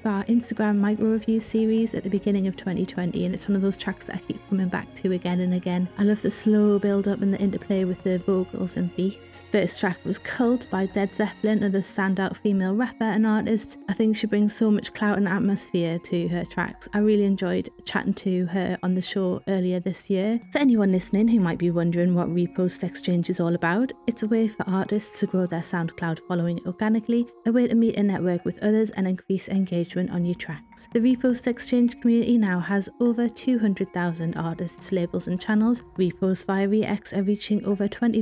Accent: British